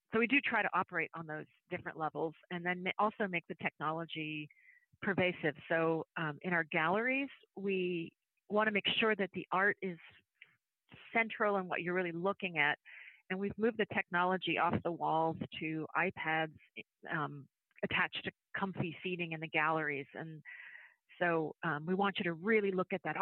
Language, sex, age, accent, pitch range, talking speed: English, female, 40-59, American, 160-195 Hz, 170 wpm